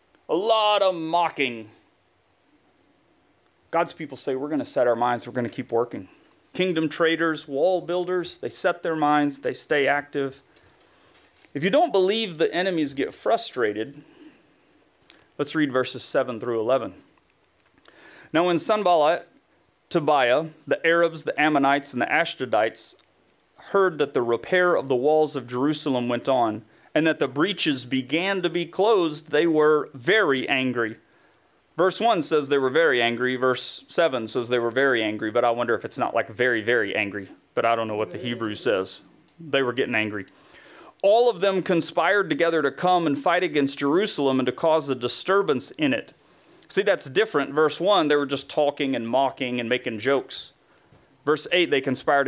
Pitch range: 125-170 Hz